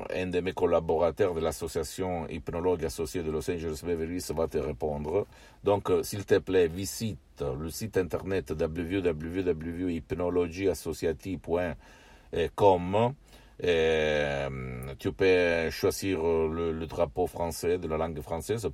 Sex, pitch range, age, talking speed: male, 75-85 Hz, 60-79, 110 wpm